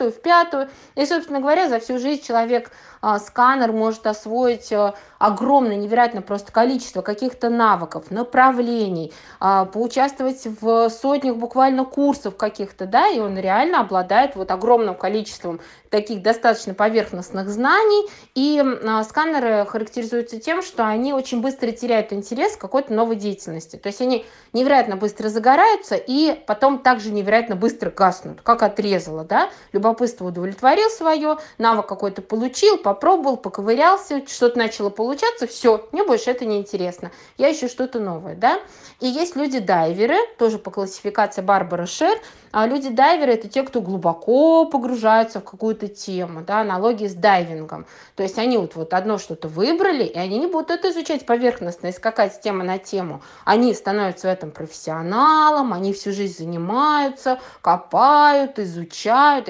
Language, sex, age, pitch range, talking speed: Russian, female, 20-39, 200-265 Hz, 145 wpm